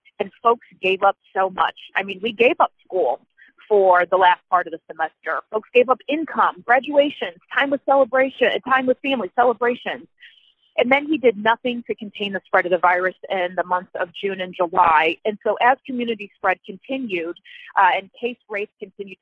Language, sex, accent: English, female, American